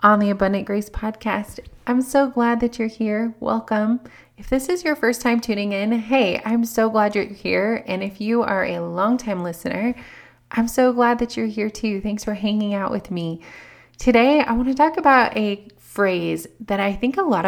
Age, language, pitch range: 20-39, English, 175-230 Hz